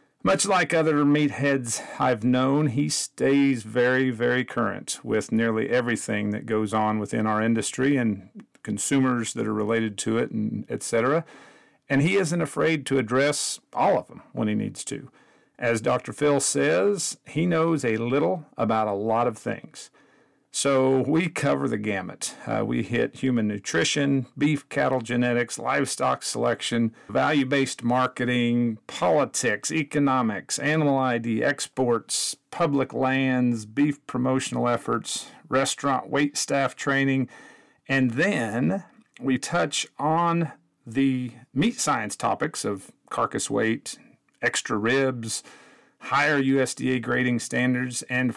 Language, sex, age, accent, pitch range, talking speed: English, male, 50-69, American, 120-140 Hz, 130 wpm